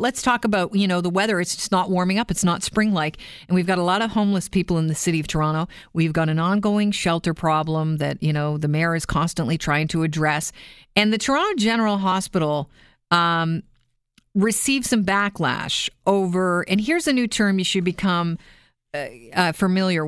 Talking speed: 195 wpm